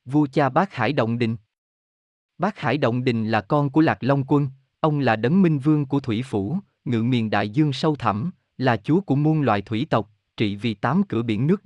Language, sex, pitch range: Vietnamese, male, 110-155 Hz